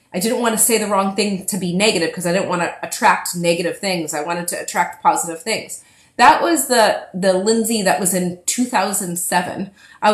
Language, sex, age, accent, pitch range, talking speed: English, female, 30-49, American, 175-225 Hz, 195 wpm